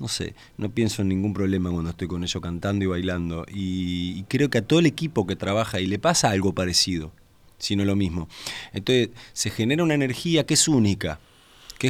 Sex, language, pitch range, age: male, Spanish, 90-120 Hz, 30-49